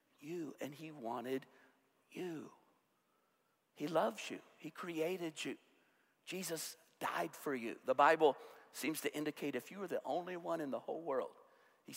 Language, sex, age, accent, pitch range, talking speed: English, male, 50-69, American, 130-180 Hz, 155 wpm